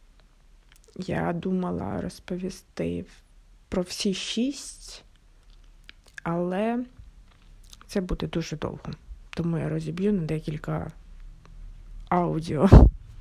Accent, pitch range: native, 155-210 Hz